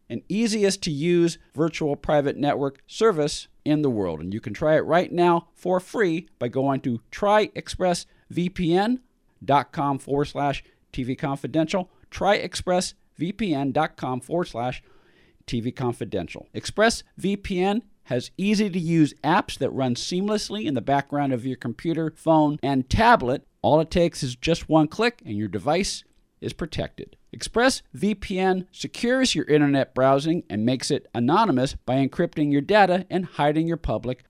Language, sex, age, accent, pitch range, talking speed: English, male, 50-69, American, 135-180 Hz, 130 wpm